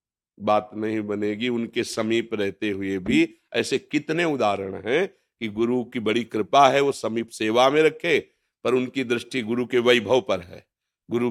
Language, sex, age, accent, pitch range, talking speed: Hindi, male, 50-69, native, 105-140 Hz, 170 wpm